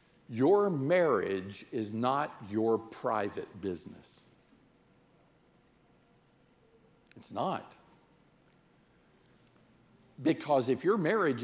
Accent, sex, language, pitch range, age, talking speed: American, male, English, 140-220 Hz, 50-69, 70 wpm